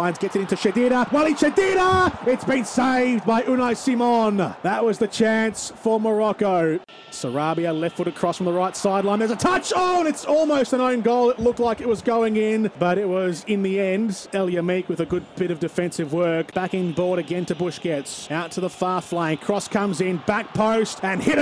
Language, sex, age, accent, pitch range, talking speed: English, male, 30-49, Australian, 175-225 Hz, 215 wpm